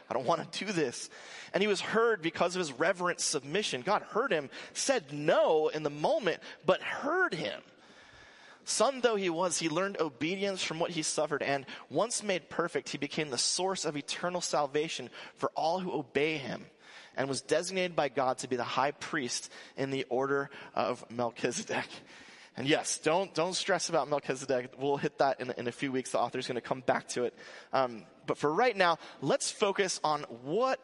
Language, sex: English, male